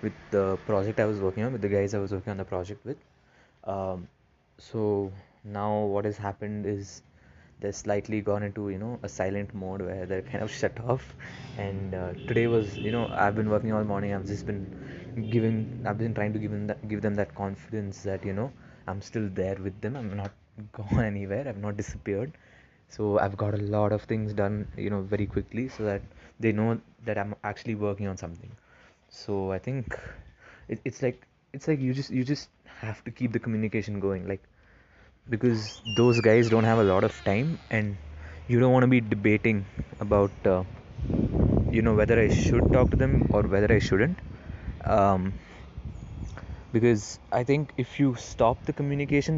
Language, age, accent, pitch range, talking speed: English, 20-39, Indian, 100-115 Hz, 190 wpm